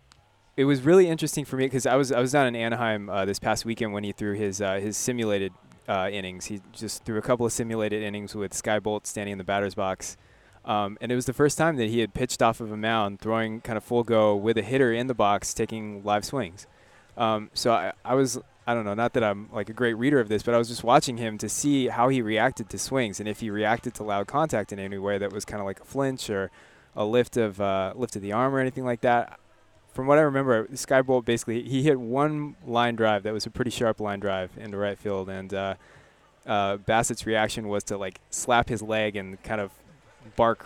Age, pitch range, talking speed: 20-39, 100-120 Hz, 250 wpm